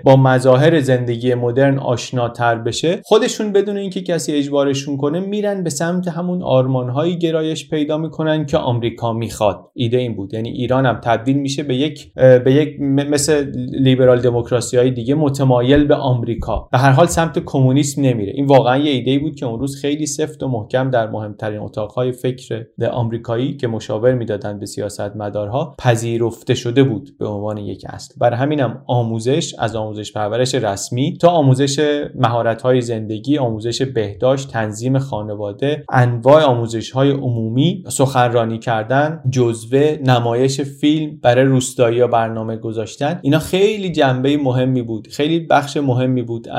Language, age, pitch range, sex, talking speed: Persian, 30-49, 115-145 Hz, male, 145 wpm